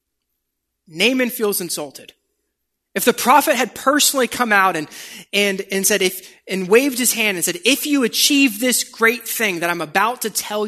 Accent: American